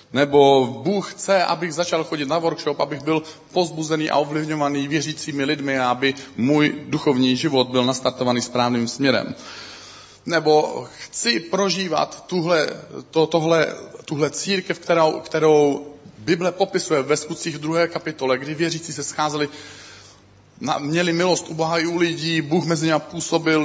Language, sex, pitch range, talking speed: Czech, male, 140-180 Hz, 130 wpm